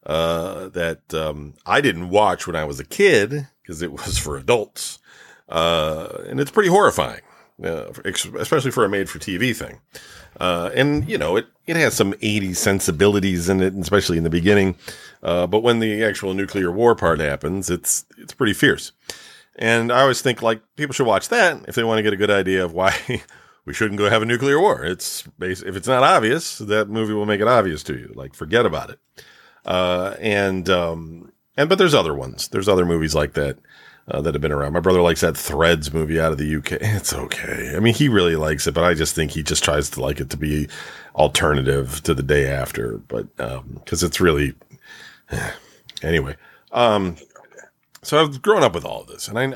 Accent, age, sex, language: American, 40-59, male, English